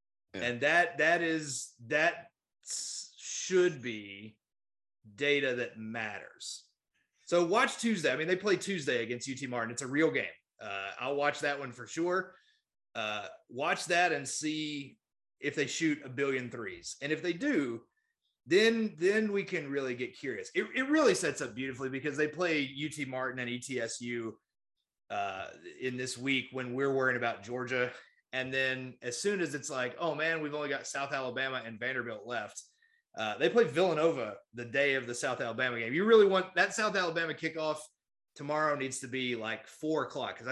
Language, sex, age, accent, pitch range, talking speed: English, male, 30-49, American, 125-175 Hz, 180 wpm